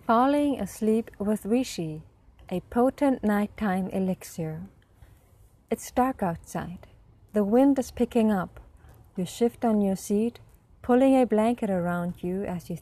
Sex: female